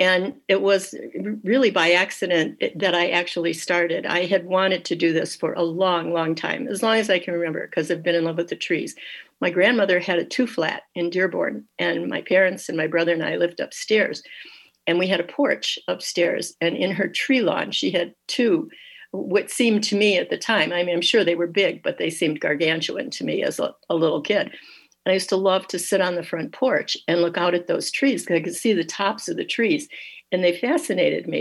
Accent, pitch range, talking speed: American, 170-205 Hz, 235 wpm